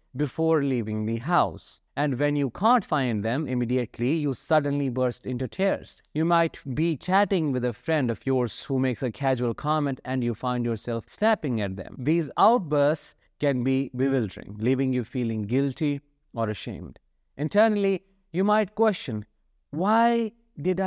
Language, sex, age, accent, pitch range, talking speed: English, male, 50-69, Indian, 115-155 Hz, 155 wpm